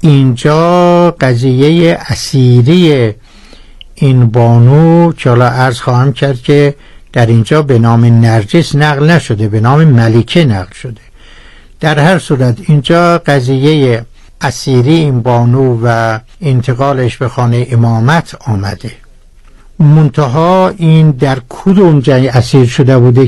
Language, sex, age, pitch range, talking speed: Persian, male, 60-79, 120-150 Hz, 110 wpm